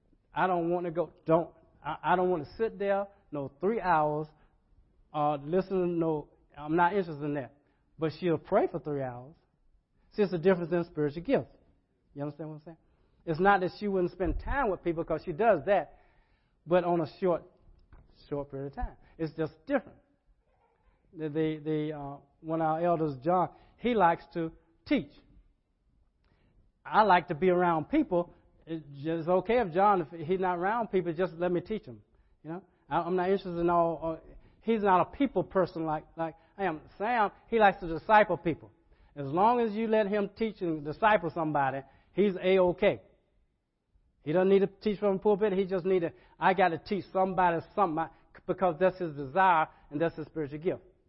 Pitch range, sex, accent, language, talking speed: 150-185 Hz, male, American, English, 190 wpm